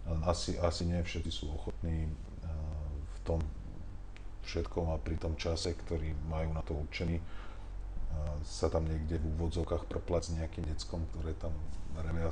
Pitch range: 80-90 Hz